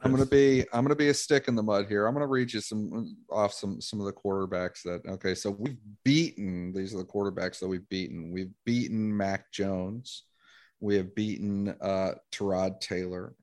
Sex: male